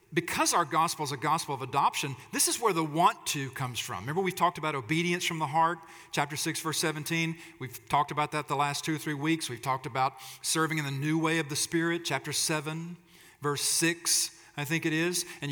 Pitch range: 140-165 Hz